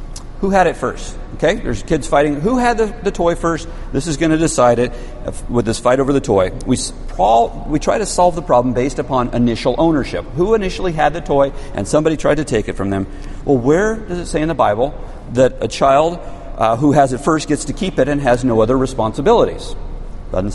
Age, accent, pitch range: 50-69, American, 115-165 Hz